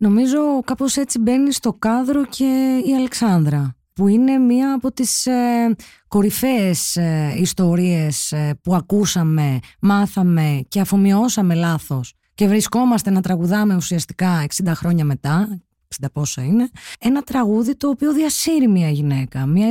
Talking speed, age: 135 wpm, 20-39